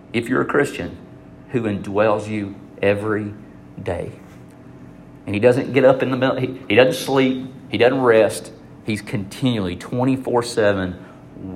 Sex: male